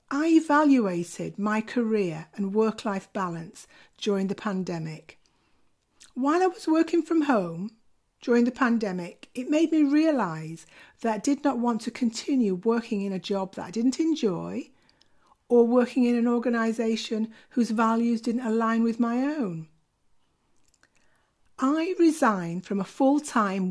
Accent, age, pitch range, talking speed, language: British, 50-69, 190-250 Hz, 140 wpm, English